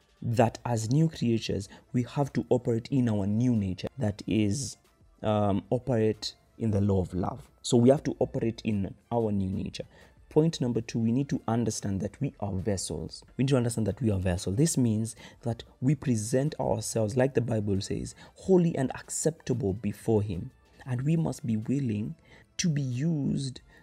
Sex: male